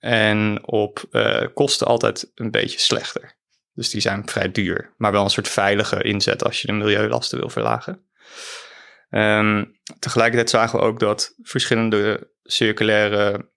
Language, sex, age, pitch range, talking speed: Dutch, male, 20-39, 105-120 Hz, 145 wpm